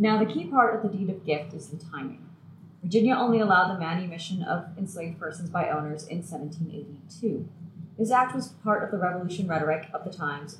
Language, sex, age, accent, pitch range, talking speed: English, female, 30-49, American, 160-205 Hz, 200 wpm